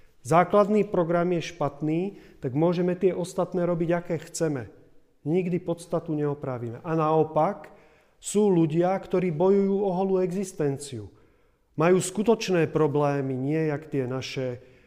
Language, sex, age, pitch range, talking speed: Czech, male, 40-59, 135-170 Hz, 120 wpm